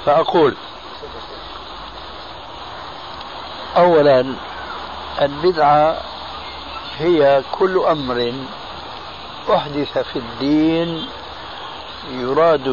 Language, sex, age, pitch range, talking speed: Arabic, male, 60-79, 125-155 Hz, 45 wpm